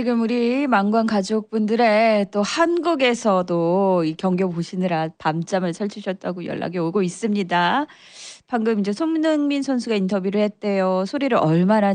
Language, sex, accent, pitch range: Korean, female, native, 190-255 Hz